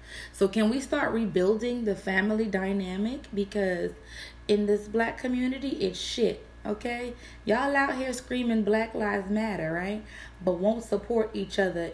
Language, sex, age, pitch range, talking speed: English, female, 20-39, 180-230 Hz, 145 wpm